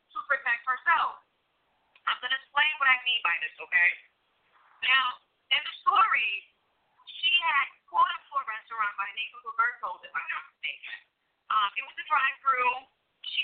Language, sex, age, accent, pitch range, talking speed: English, female, 40-59, American, 270-390 Hz, 175 wpm